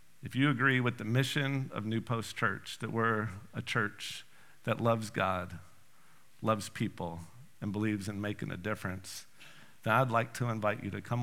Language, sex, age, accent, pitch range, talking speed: English, male, 50-69, American, 100-125 Hz, 175 wpm